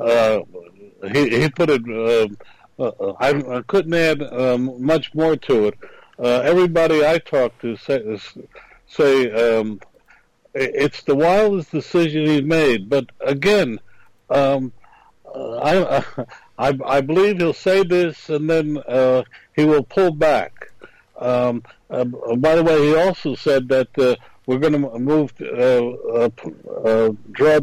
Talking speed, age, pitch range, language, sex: 135 wpm, 60-79, 130-175 Hz, English, male